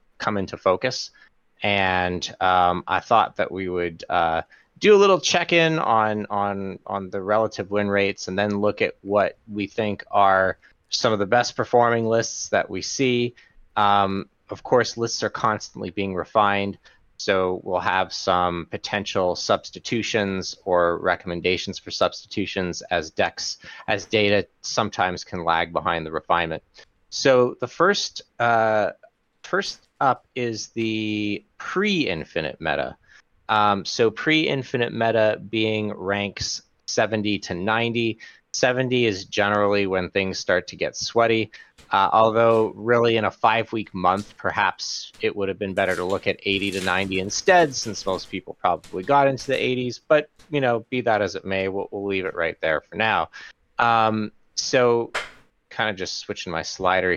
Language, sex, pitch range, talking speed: English, male, 95-115 Hz, 155 wpm